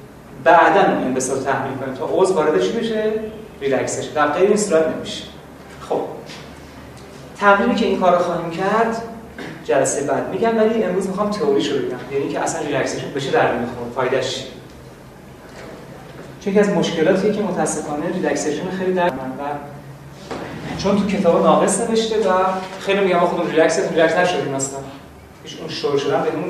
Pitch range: 145-205 Hz